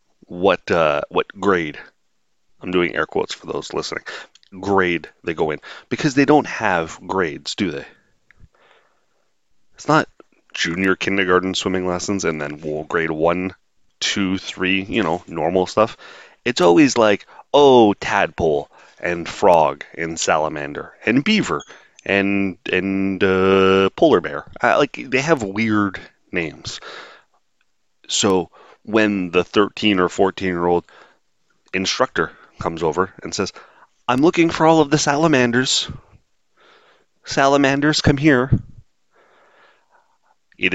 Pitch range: 90-125 Hz